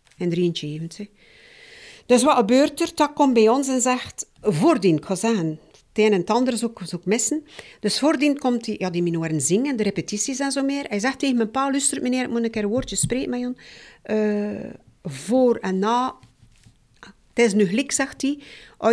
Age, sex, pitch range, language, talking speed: 50-69, female, 165-245 Hz, Dutch, 205 wpm